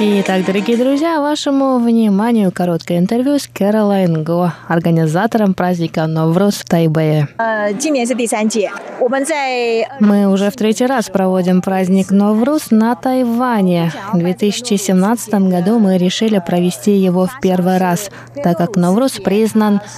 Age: 20-39